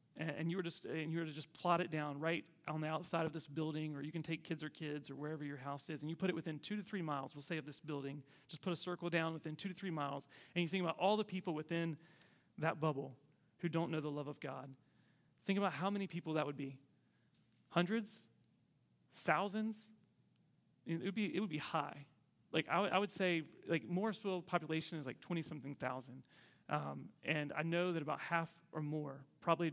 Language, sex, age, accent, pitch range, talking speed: English, male, 30-49, American, 150-180 Hz, 225 wpm